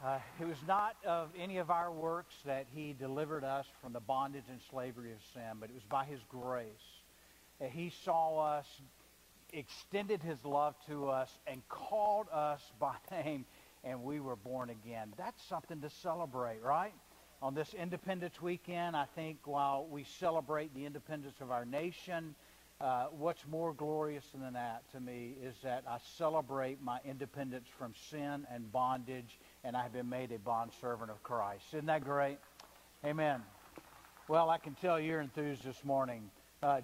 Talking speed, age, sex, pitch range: 170 wpm, 60-79, male, 125-155 Hz